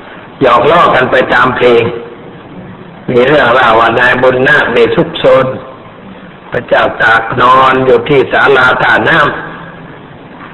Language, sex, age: Thai, male, 60-79